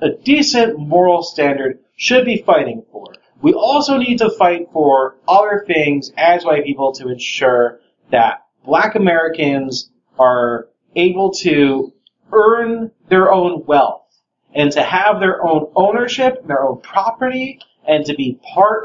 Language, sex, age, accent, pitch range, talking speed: English, male, 30-49, American, 145-225 Hz, 145 wpm